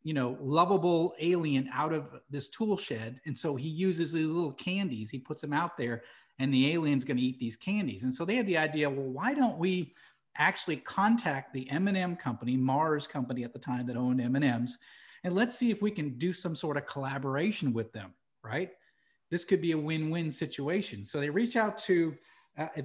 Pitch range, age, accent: 135-170 Hz, 40-59, American